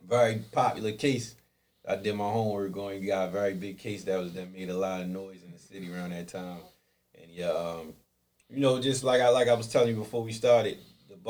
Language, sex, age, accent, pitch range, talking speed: English, male, 30-49, American, 90-105 Hz, 240 wpm